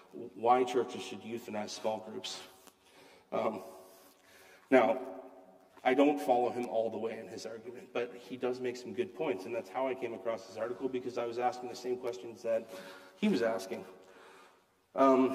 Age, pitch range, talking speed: 30-49, 95-125 Hz, 175 wpm